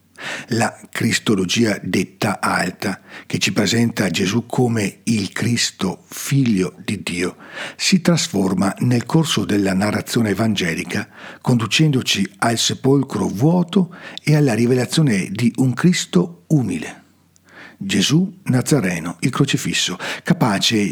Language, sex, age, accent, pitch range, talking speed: Italian, male, 60-79, native, 105-150 Hz, 105 wpm